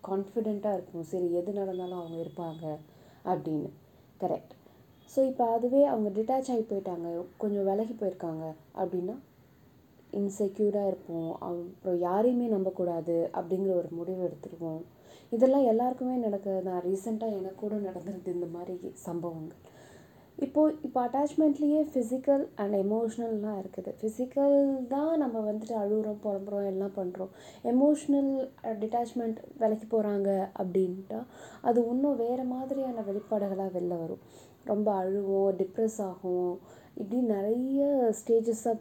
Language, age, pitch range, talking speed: Tamil, 20-39, 185-245 Hz, 115 wpm